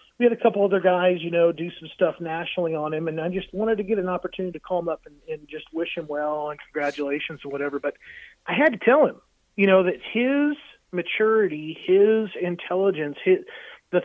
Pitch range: 145-185 Hz